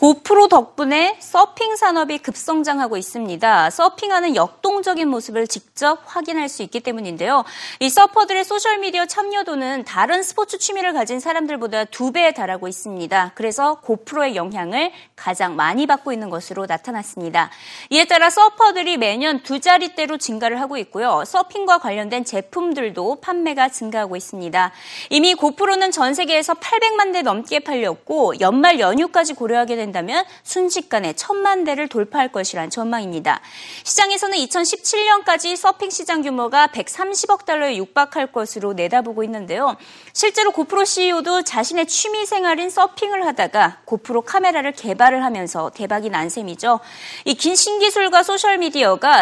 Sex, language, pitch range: female, Korean, 225-365 Hz